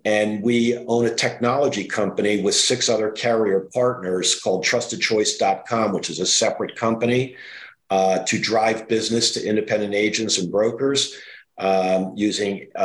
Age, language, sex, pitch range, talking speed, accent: 50-69, English, male, 105-120 Hz, 135 wpm, American